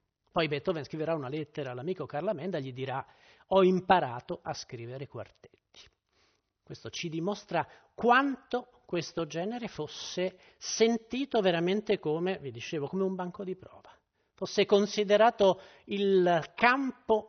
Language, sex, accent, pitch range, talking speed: Italian, male, native, 145-205 Hz, 130 wpm